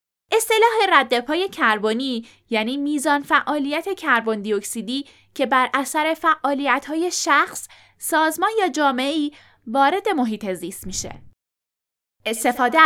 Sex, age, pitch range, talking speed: female, 10-29, 235-345 Hz, 100 wpm